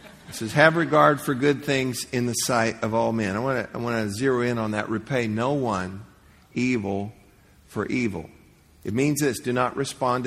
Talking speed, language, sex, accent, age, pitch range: 195 wpm, English, male, American, 50-69, 100-130 Hz